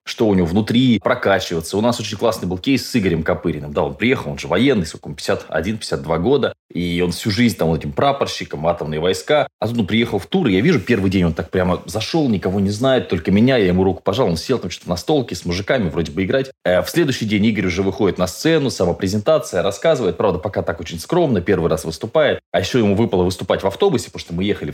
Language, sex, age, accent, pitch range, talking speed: Russian, male, 20-39, native, 85-110 Hz, 235 wpm